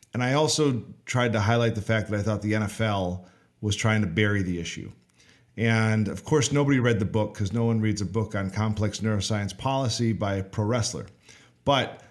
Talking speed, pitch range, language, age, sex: 205 wpm, 100-120 Hz, English, 40-59, male